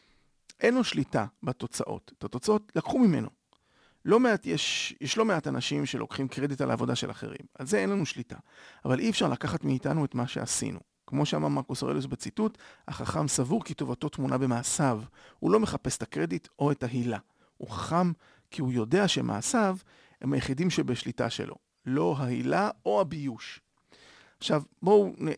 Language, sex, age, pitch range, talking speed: Hebrew, male, 40-59, 120-160 Hz, 165 wpm